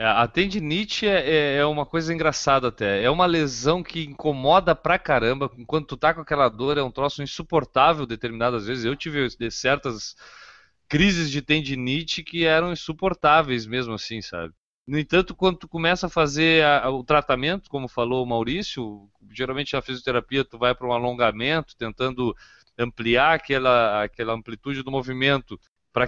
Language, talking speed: Portuguese, 155 wpm